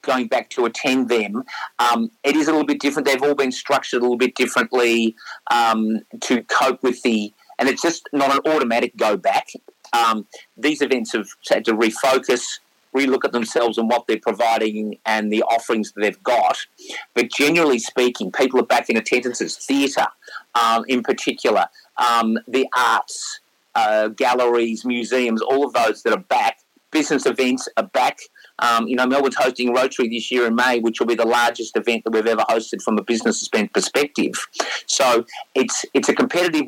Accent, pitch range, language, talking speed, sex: Australian, 115-135 Hz, English, 180 wpm, male